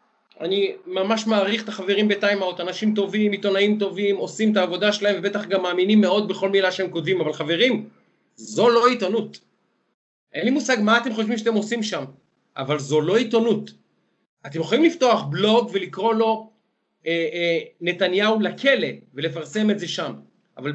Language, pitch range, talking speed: Hebrew, 185-235 Hz, 160 wpm